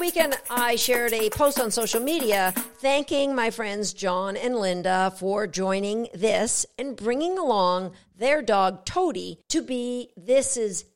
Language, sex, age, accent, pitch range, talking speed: English, female, 50-69, American, 195-270 Hz, 150 wpm